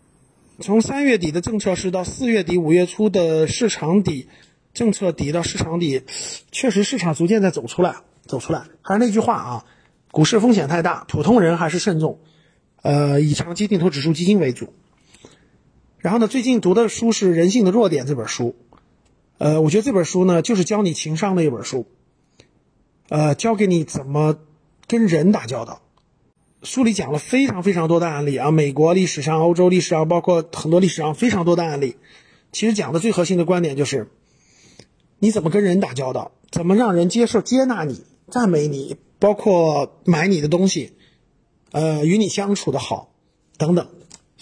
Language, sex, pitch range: Chinese, male, 155-210 Hz